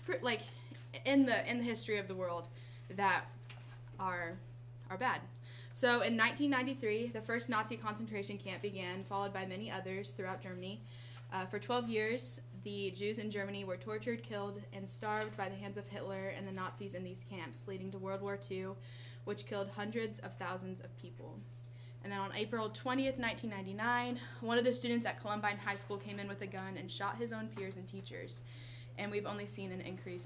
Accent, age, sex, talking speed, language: American, 10-29, female, 190 wpm, English